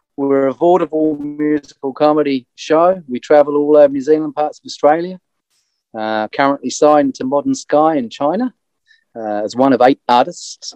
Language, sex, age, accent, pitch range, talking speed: English, male, 30-49, British, 120-160 Hz, 160 wpm